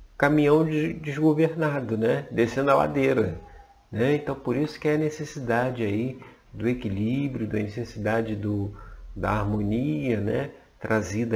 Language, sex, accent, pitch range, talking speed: Portuguese, male, Brazilian, 110-145 Hz, 125 wpm